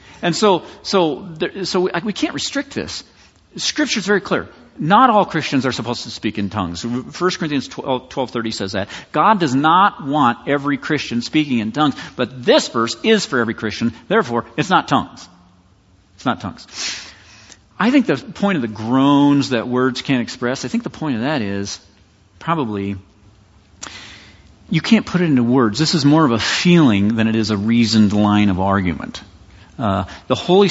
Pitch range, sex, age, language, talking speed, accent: 100-140 Hz, male, 40-59, English, 180 wpm, American